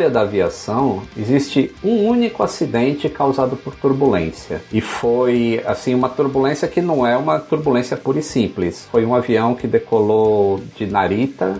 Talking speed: 150 wpm